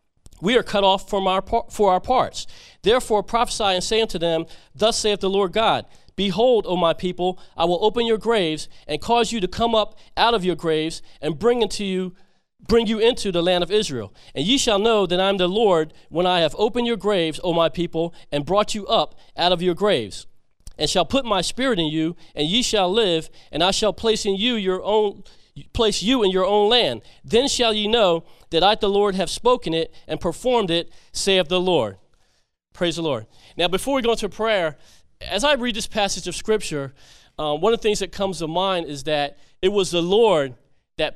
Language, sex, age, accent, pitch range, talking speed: English, male, 40-59, American, 165-215 Hz, 220 wpm